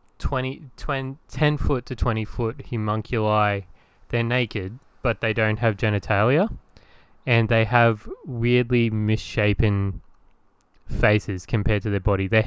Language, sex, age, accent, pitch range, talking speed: English, male, 20-39, Australian, 105-120 Hz, 125 wpm